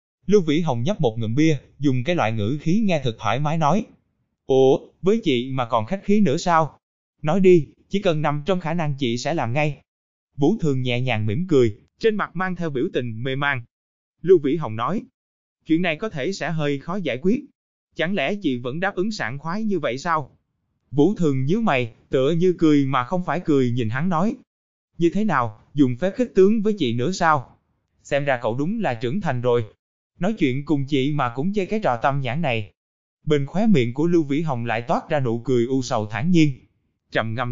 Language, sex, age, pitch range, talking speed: Vietnamese, male, 20-39, 125-180 Hz, 220 wpm